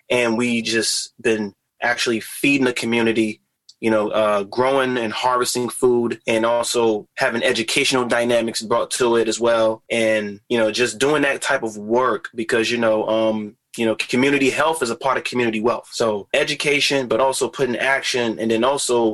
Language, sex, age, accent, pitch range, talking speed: English, male, 20-39, American, 110-125 Hz, 180 wpm